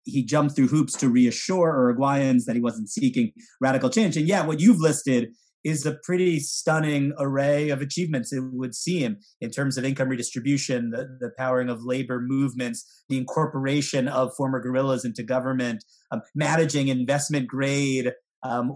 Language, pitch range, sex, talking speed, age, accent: English, 125-160 Hz, male, 165 wpm, 30-49, American